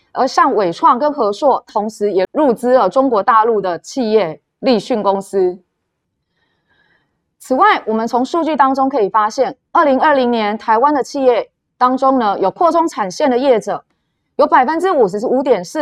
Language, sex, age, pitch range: Chinese, female, 20-39, 205-285 Hz